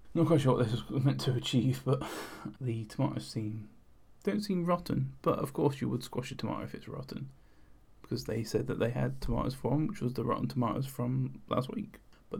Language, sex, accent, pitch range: English, male, British, 110-125 Hz